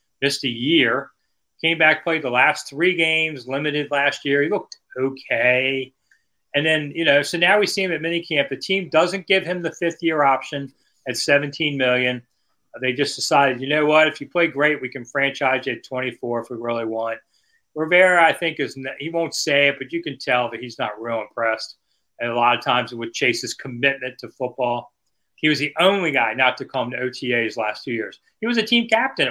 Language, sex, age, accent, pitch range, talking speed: English, male, 40-59, American, 130-175 Hz, 215 wpm